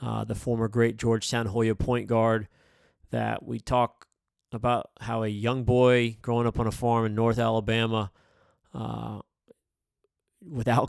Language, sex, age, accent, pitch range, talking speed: English, male, 30-49, American, 110-120 Hz, 145 wpm